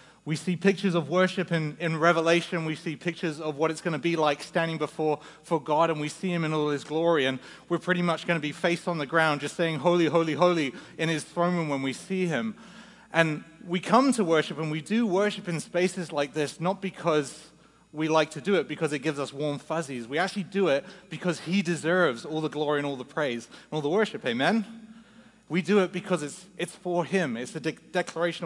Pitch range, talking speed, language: 160-195 Hz, 235 wpm, English